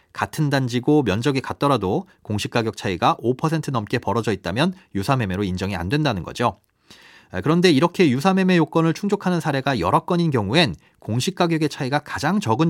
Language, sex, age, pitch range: Korean, male, 30-49, 115-170 Hz